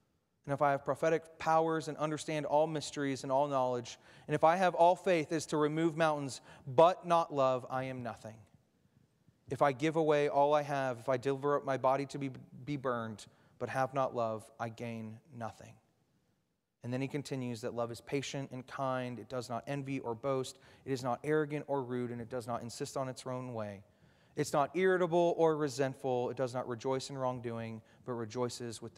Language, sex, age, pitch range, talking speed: English, male, 30-49, 120-145 Hz, 205 wpm